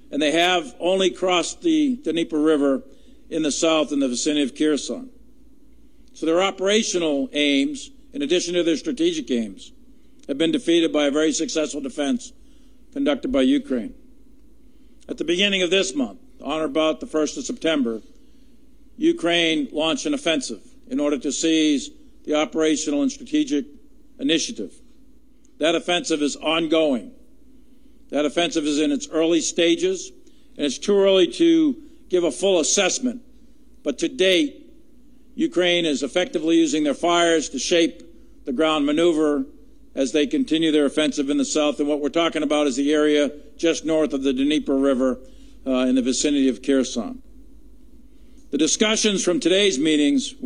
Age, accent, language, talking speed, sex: 50-69, American, English, 155 wpm, male